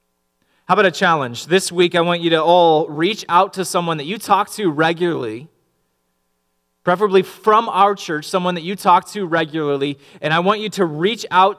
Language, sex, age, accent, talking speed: English, male, 30-49, American, 190 wpm